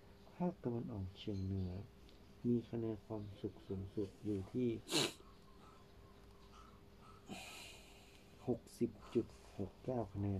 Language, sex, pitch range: Thai, male, 100-110 Hz